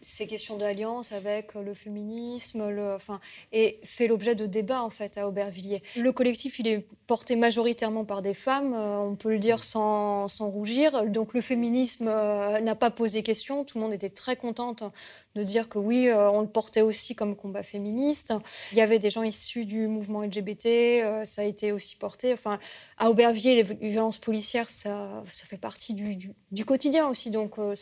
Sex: female